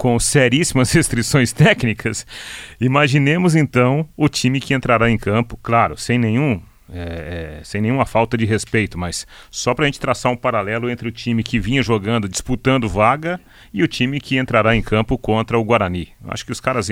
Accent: Brazilian